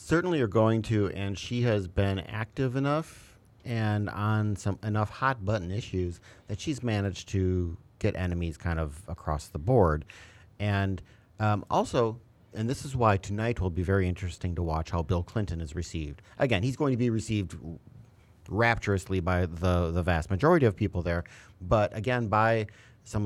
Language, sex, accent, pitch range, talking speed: English, male, American, 90-110 Hz, 170 wpm